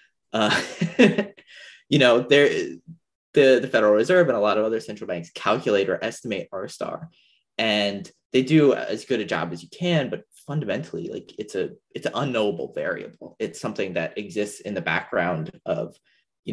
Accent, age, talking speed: American, 20-39, 175 wpm